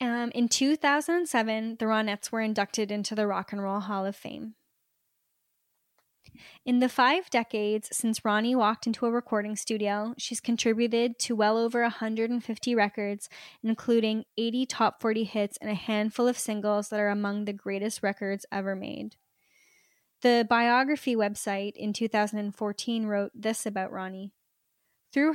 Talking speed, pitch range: 145 wpm, 210-235 Hz